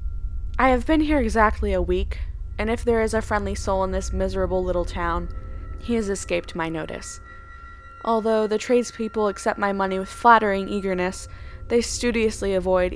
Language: English